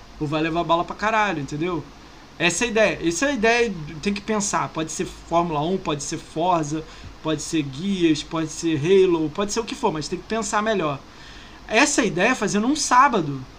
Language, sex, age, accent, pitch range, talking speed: Portuguese, male, 20-39, Brazilian, 160-220 Hz, 210 wpm